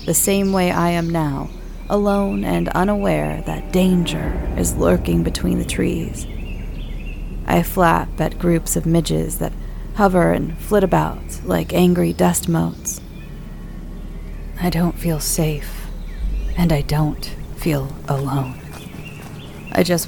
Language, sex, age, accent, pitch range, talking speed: English, female, 30-49, American, 135-170 Hz, 125 wpm